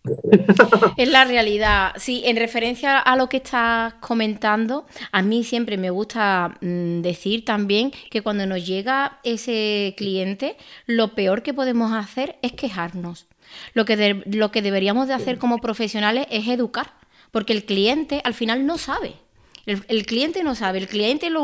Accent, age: Spanish, 30-49